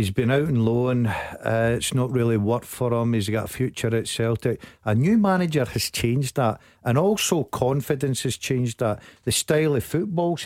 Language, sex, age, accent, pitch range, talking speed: English, male, 50-69, British, 115-165 Hz, 195 wpm